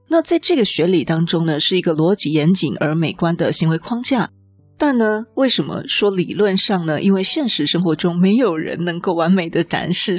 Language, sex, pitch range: Chinese, female, 160-210 Hz